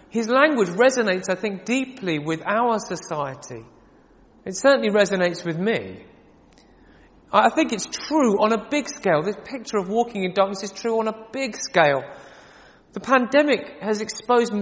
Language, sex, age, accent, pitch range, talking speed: English, male, 40-59, British, 175-230 Hz, 155 wpm